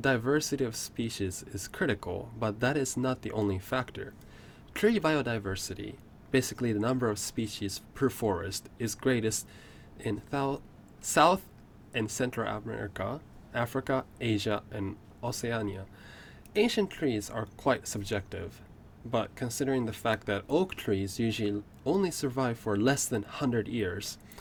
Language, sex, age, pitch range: Japanese, male, 20-39, 105-130 Hz